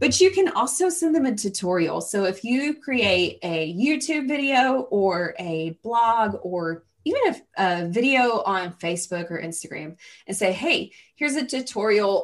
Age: 20-39